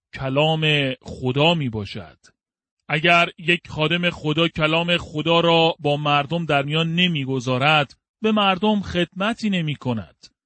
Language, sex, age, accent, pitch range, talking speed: French, male, 40-59, Canadian, 155-190 Hz, 125 wpm